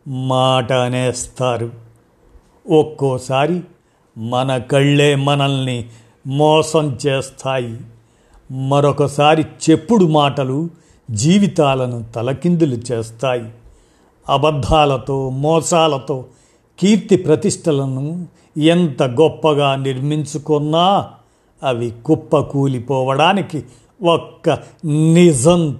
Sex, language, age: male, Telugu, 50-69